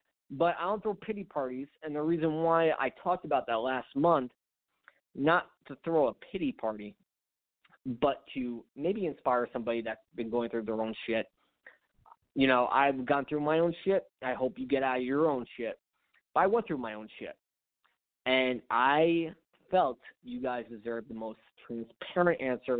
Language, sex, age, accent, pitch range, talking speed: English, male, 20-39, American, 120-155 Hz, 180 wpm